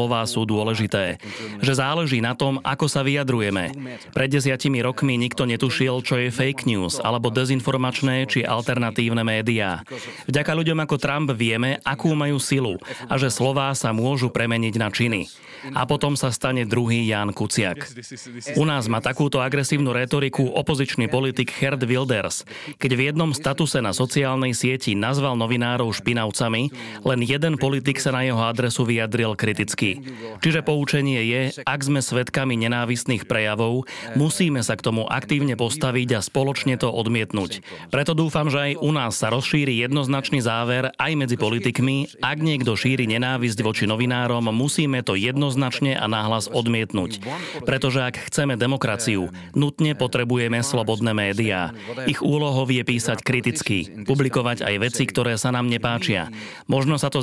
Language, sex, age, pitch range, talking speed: Slovak, male, 30-49, 115-140 Hz, 150 wpm